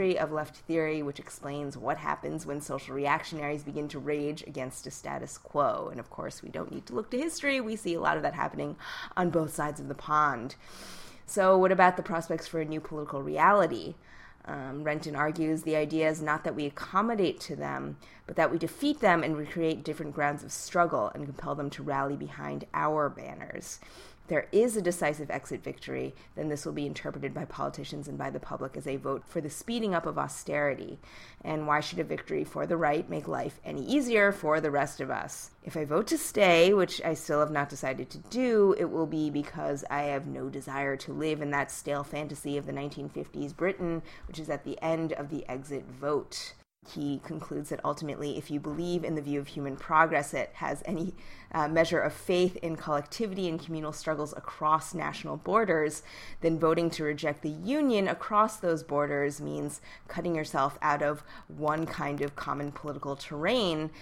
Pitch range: 145-165 Hz